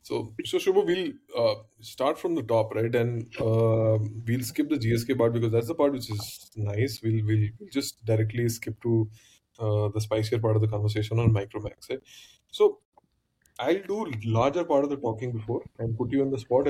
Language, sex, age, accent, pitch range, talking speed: English, male, 20-39, Indian, 110-120 Hz, 200 wpm